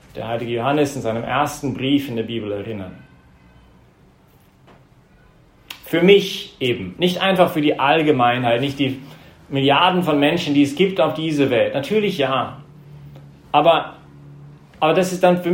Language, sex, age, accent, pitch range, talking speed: English, male, 40-59, German, 140-175 Hz, 145 wpm